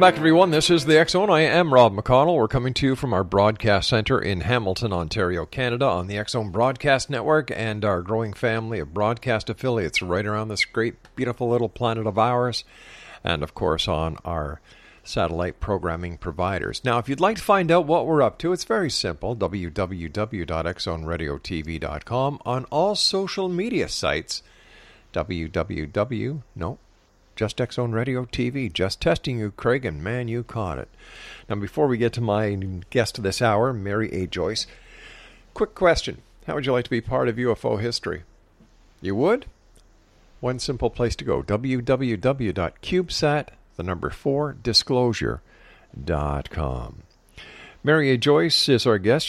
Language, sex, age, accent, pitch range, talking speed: English, male, 50-69, American, 95-130 Hz, 155 wpm